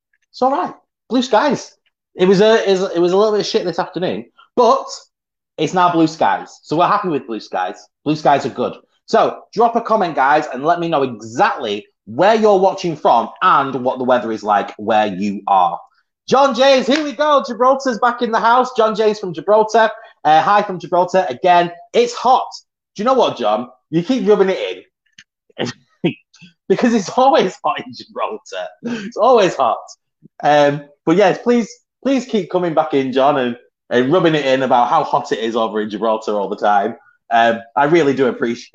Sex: male